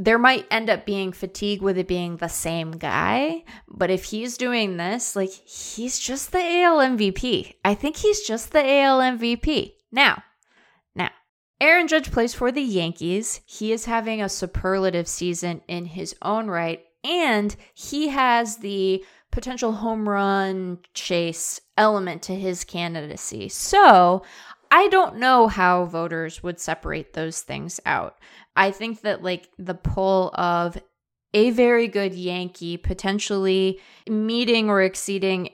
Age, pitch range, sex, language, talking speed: 20-39, 175-225 Hz, female, English, 145 wpm